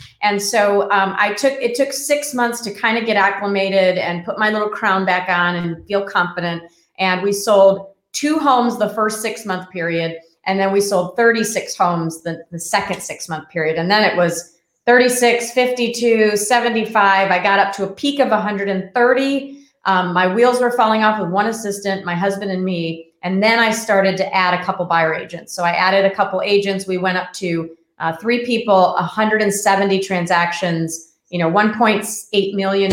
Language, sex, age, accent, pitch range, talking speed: English, female, 30-49, American, 180-215 Hz, 190 wpm